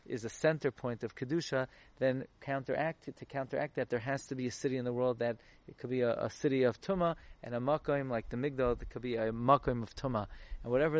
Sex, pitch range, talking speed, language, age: male, 120-145 Hz, 240 wpm, English, 30-49